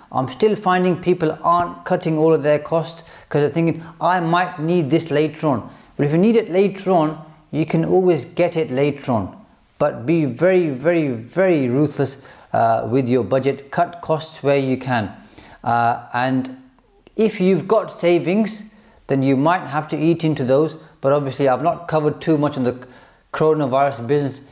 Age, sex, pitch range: 30-49, male, 125-160 Hz